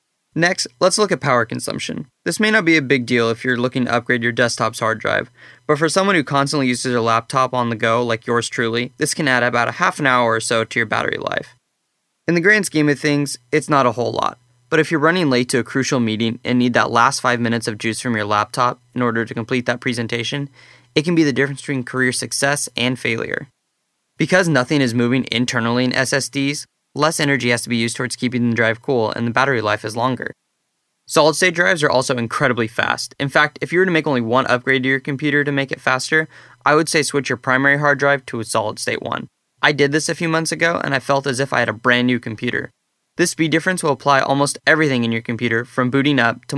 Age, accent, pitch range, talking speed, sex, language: 20-39, American, 120-145 Hz, 245 wpm, male, English